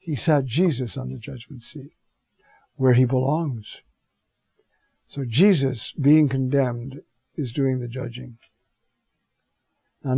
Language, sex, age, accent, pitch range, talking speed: English, male, 60-79, American, 125-150 Hz, 110 wpm